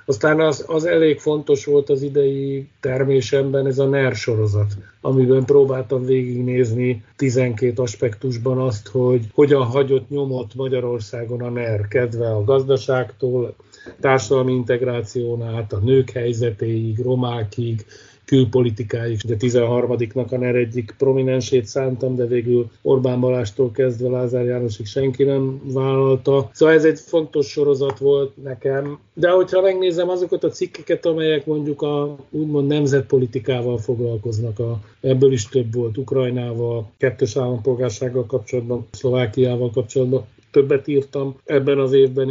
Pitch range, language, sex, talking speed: 120-135 Hz, Hungarian, male, 125 wpm